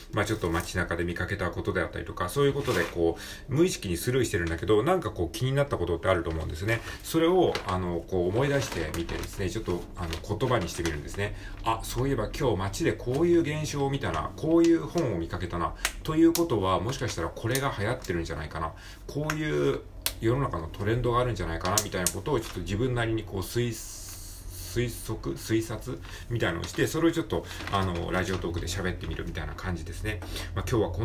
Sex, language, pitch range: male, Japanese, 85-115 Hz